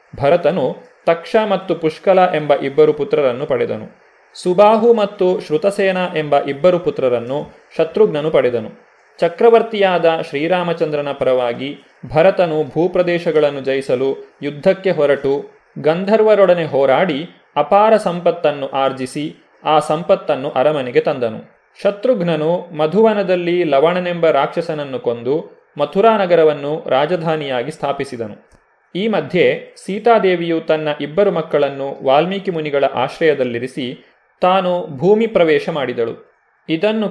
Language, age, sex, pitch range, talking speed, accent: Kannada, 30-49, male, 145-195 Hz, 90 wpm, native